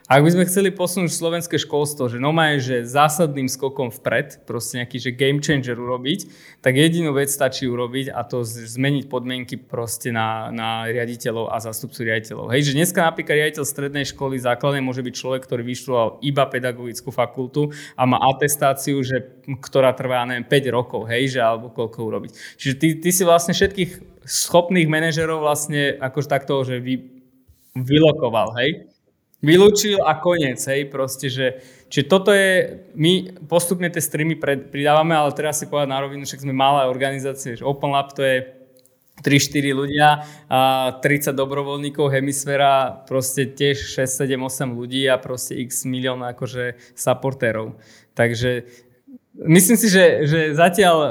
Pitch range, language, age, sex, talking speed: 130-150 Hz, Slovak, 20-39, male, 155 wpm